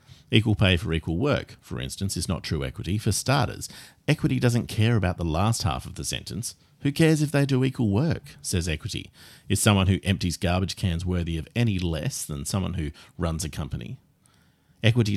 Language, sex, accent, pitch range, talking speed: English, male, Australian, 85-110 Hz, 195 wpm